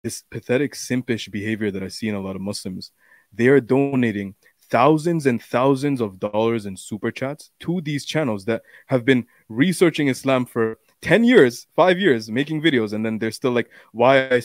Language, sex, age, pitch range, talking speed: English, male, 20-39, 105-125 Hz, 185 wpm